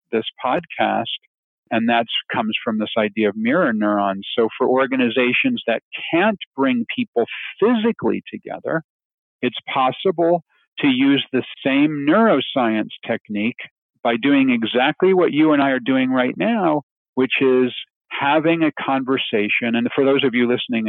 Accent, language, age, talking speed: American, English, 50-69, 145 wpm